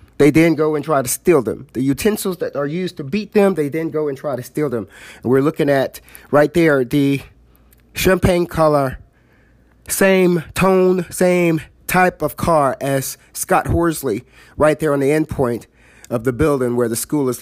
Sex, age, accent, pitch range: male, 30-49, American, 130-160 Hz